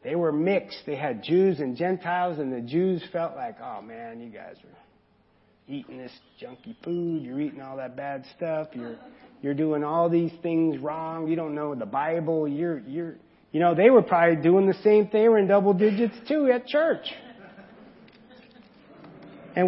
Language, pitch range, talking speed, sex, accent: English, 150-210 Hz, 185 wpm, male, American